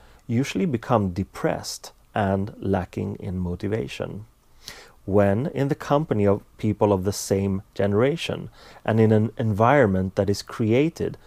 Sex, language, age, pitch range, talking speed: male, English, 30-49, 95-115 Hz, 130 wpm